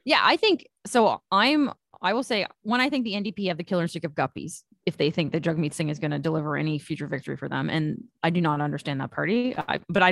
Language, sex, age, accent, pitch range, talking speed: English, female, 20-39, American, 155-195 Hz, 265 wpm